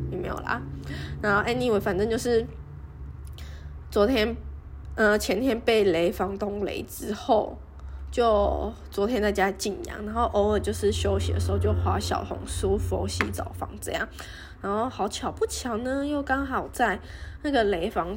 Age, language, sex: 10-29, Chinese, female